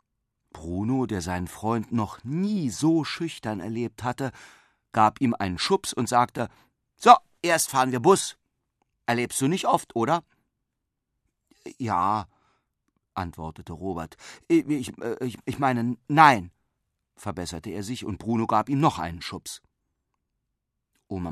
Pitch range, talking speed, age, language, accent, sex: 95-125 Hz, 120 wpm, 40-59, German, German, male